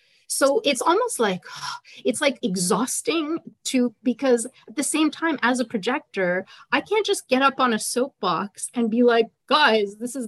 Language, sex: English, female